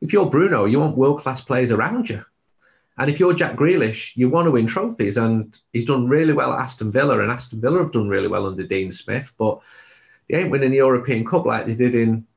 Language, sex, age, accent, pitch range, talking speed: English, male, 30-49, British, 105-135 Hz, 235 wpm